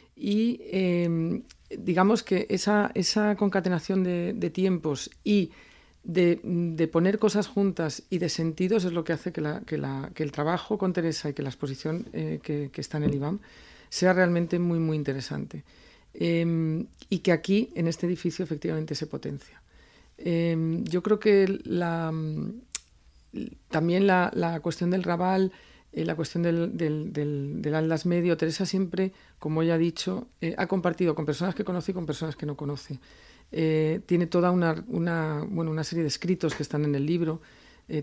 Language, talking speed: Spanish, 170 wpm